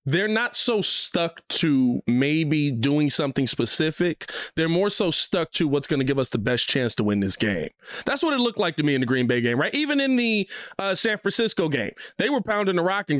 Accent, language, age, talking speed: American, English, 20-39, 235 wpm